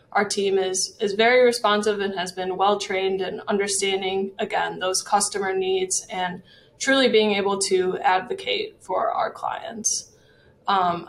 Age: 20-39